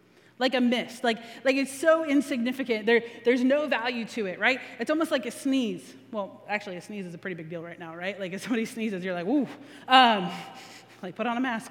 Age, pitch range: 20-39, 225-285 Hz